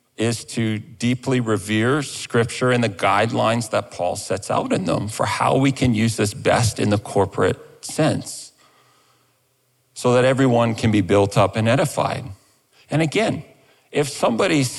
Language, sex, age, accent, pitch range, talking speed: English, male, 40-59, American, 110-140 Hz, 155 wpm